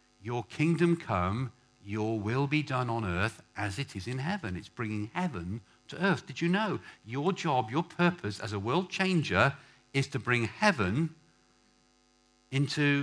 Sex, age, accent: male, 50-69, British